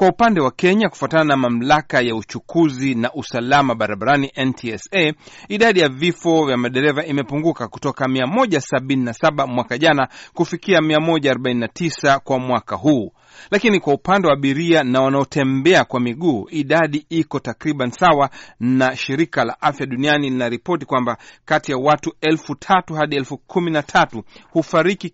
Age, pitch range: 40-59, 130-165 Hz